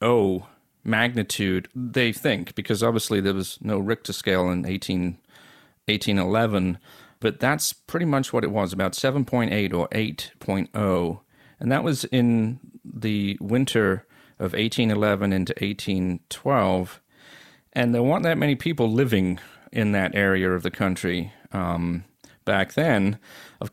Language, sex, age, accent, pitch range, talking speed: English, male, 40-59, American, 100-120 Hz, 130 wpm